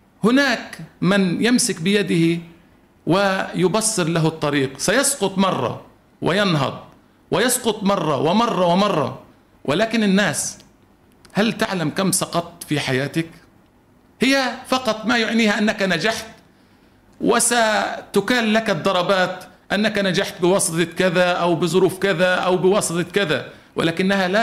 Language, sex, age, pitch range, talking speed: Arabic, male, 50-69, 150-210 Hz, 105 wpm